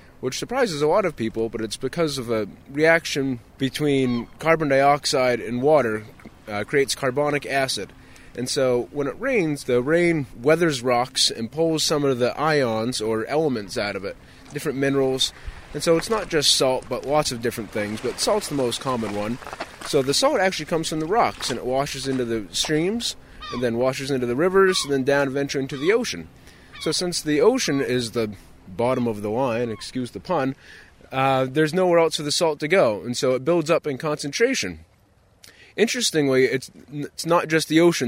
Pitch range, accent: 120-155 Hz, American